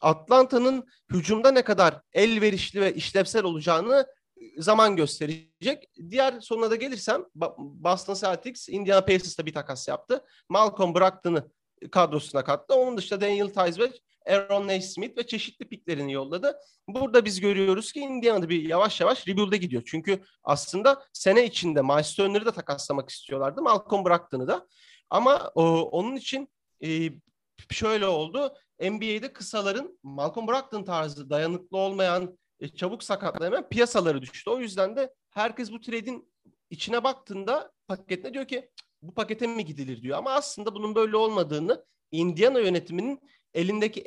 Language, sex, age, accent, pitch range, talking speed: Turkish, male, 40-59, native, 165-240 Hz, 130 wpm